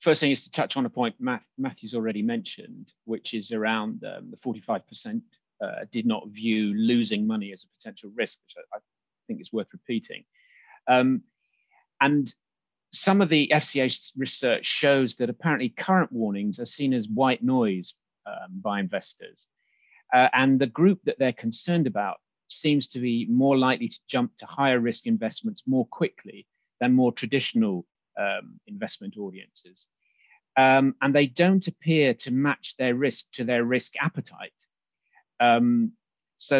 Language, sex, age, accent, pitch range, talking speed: English, male, 50-69, British, 115-185 Hz, 155 wpm